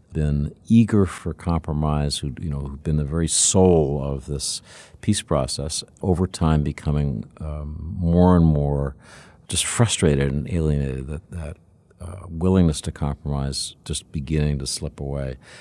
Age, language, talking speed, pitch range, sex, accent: 50-69, English, 150 wpm, 75-95 Hz, male, American